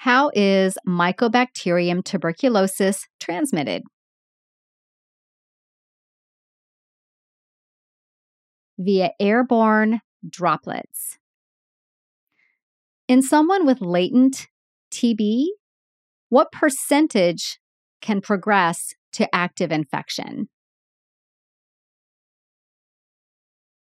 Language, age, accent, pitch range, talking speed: English, 30-49, American, 175-250 Hz, 50 wpm